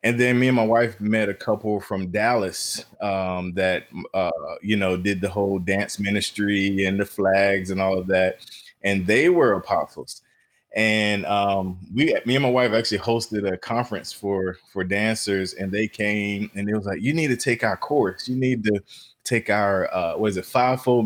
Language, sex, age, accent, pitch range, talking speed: English, male, 20-39, American, 95-115 Hz, 195 wpm